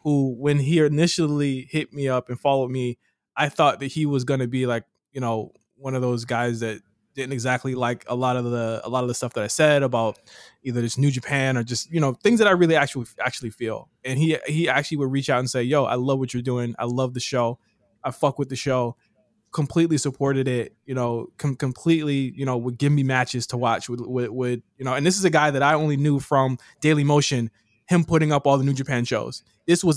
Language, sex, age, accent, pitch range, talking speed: English, male, 20-39, American, 125-150 Hz, 245 wpm